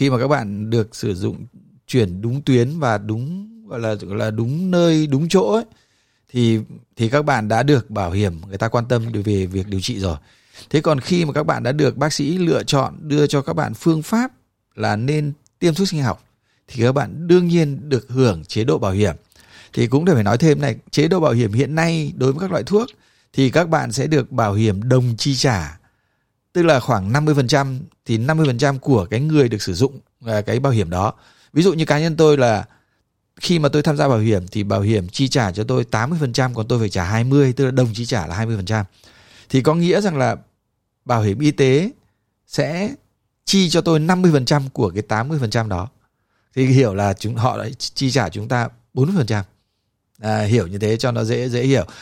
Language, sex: Vietnamese, male